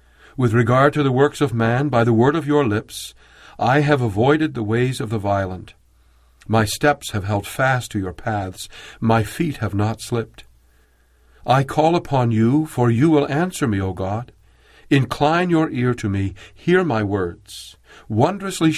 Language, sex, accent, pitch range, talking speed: English, male, American, 100-140 Hz, 175 wpm